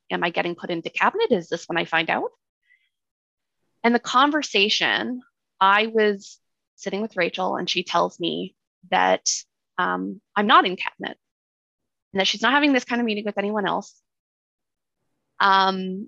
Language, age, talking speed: English, 20-39, 160 wpm